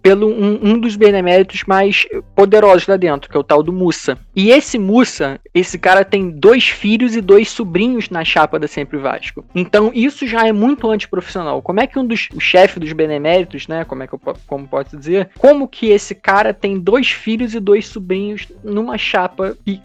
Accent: Brazilian